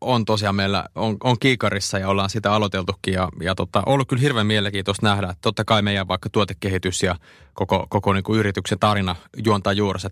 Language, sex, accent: Finnish, male, native